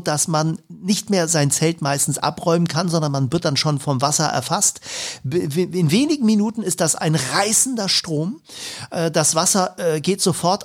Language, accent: German, German